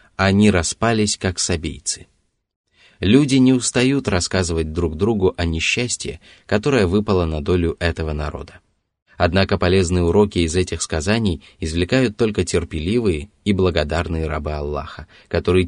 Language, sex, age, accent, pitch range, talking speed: Russian, male, 20-39, native, 85-105 Hz, 125 wpm